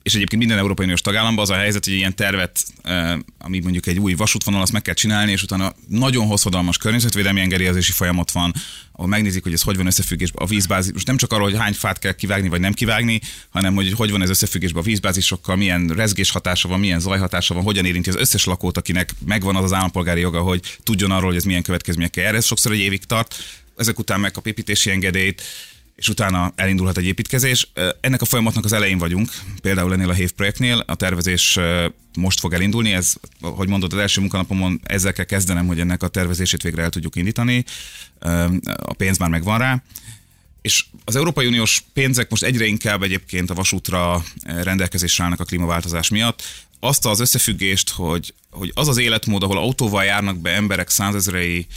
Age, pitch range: 30-49, 90-105 Hz